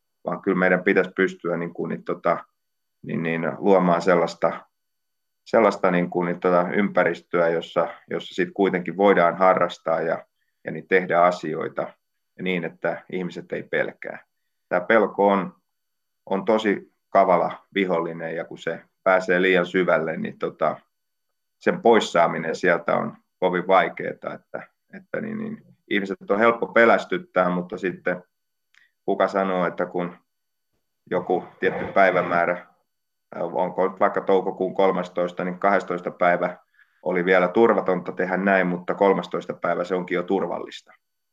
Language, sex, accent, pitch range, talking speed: Finnish, male, native, 90-95 Hz, 135 wpm